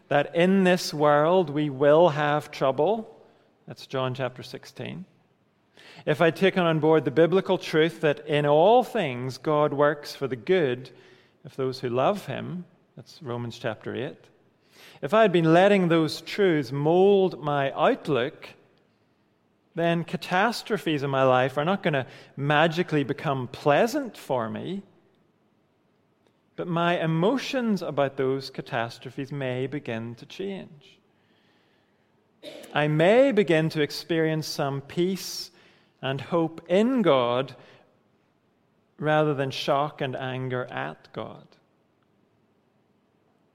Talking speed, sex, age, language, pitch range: 125 wpm, male, 40-59, English, 140-180 Hz